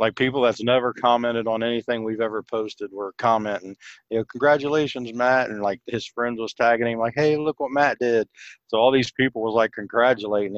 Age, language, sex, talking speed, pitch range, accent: 40-59, English, male, 205 wpm, 105-120 Hz, American